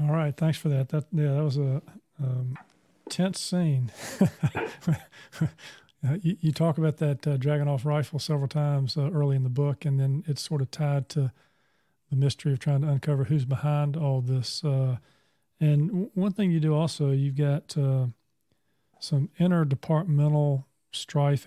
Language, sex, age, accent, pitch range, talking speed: English, male, 40-59, American, 140-155 Hz, 170 wpm